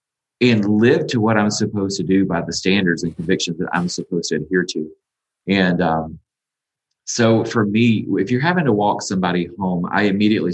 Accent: American